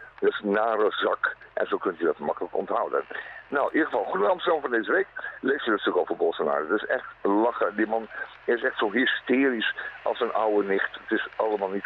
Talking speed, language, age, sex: 225 wpm, Dutch, 60-79, male